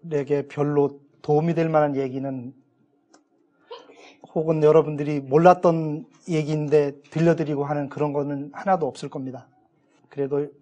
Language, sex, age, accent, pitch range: Korean, male, 30-49, native, 135-175 Hz